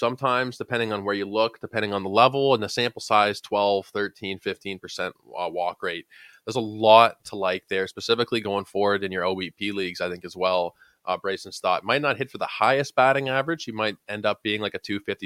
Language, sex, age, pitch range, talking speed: English, male, 20-39, 95-115 Hz, 220 wpm